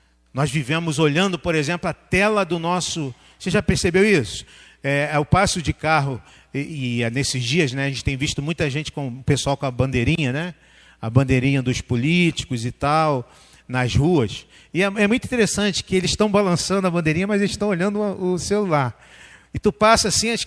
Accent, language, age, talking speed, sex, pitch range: Brazilian, Portuguese, 40-59, 200 wpm, male, 140-210 Hz